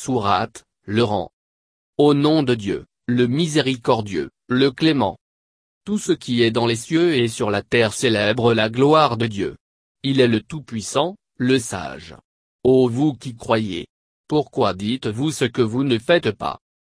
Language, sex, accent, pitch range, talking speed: French, male, French, 110-140 Hz, 155 wpm